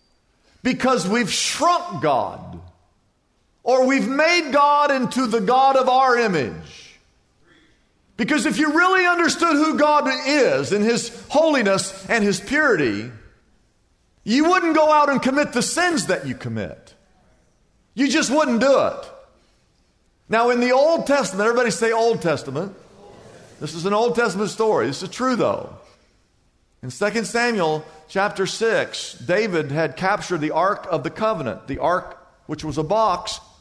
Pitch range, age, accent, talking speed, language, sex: 170-260 Hz, 50-69, American, 145 wpm, English, male